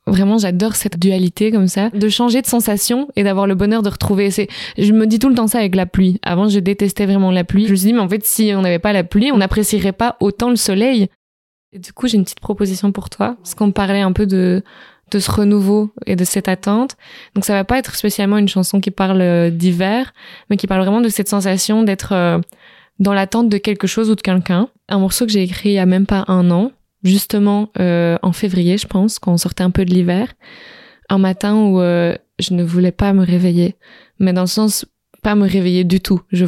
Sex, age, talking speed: female, 20-39, 240 wpm